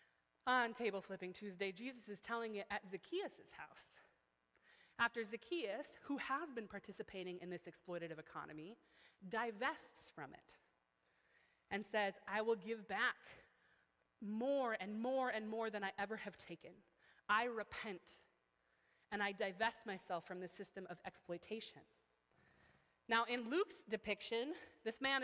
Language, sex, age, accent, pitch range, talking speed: English, female, 30-49, American, 205-260 Hz, 135 wpm